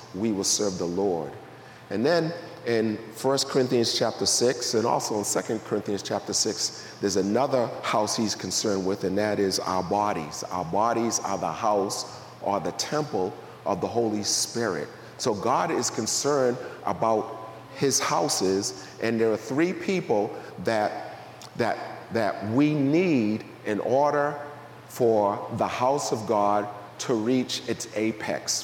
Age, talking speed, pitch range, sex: 40-59, 145 wpm, 105-130 Hz, male